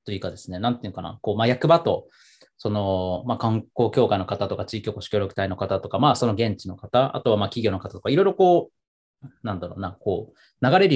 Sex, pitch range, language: male, 100-145 Hz, Japanese